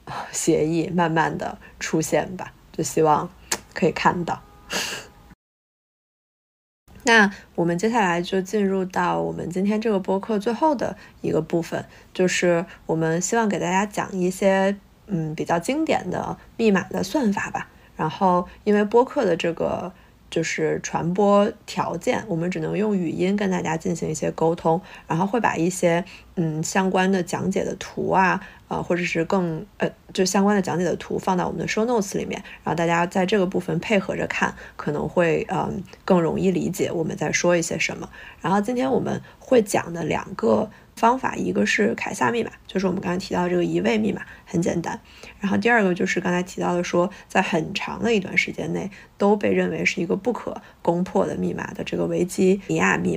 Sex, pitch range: female, 170-205 Hz